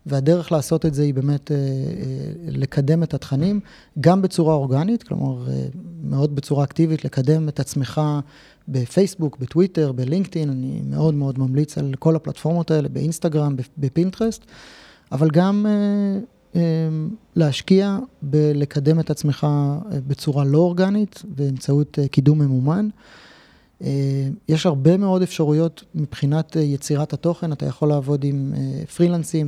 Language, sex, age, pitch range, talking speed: Hebrew, male, 30-49, 140-170 Hz, 115 wpm